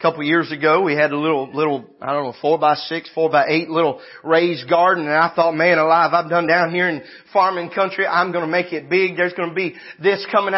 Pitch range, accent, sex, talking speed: 205-285 Hz, American, male, 250 wpm